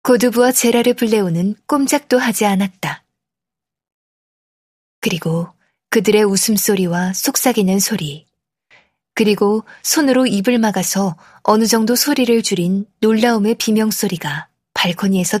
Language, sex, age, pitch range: Korean, female, 20-39, 190-235 Hz